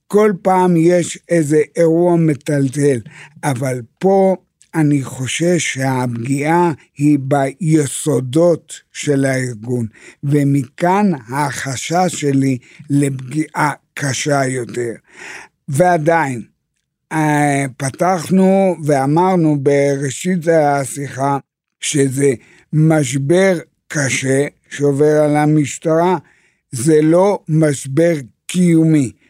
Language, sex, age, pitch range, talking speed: Hebrew, male, 60-79, 135-160 Hz, 75 wpm